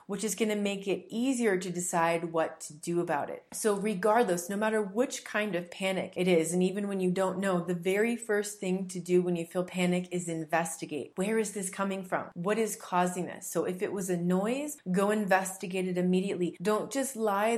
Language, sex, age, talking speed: English, female, 30-49, 220 wpm